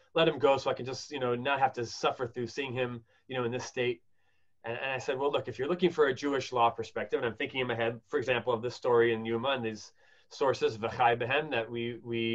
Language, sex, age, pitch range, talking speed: English, male, 30-49, 115-155 Hz, 265 wpm